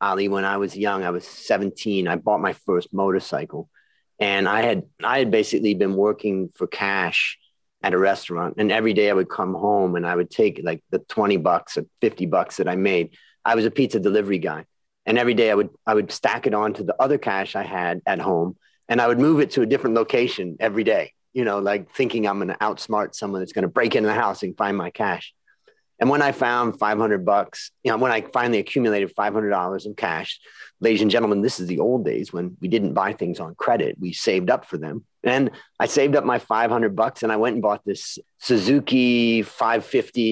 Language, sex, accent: English, male, American